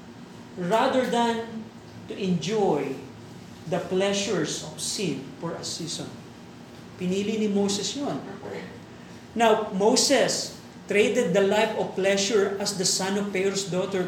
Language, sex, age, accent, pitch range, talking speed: Filipino, male, 40-59, native, 190-235 Hz, 120 wpm